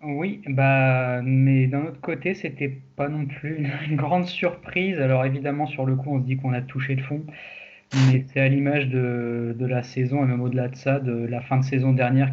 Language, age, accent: French, 20-39, French